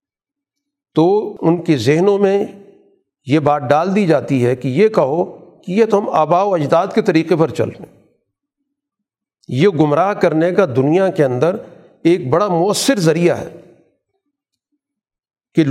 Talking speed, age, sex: 145 wpm, 50-69, male